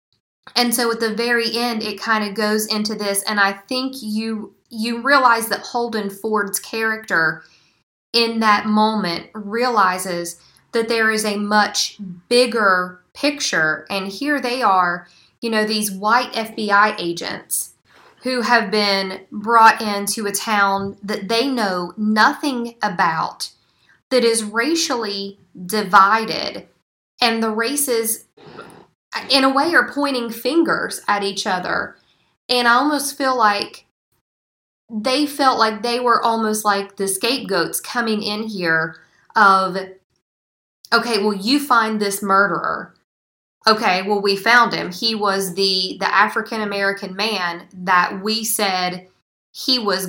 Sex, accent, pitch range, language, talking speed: female, American, 195-235 Hz, English, 135 wpm